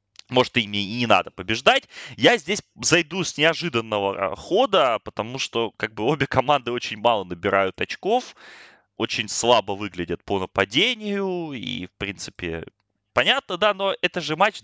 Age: 20-39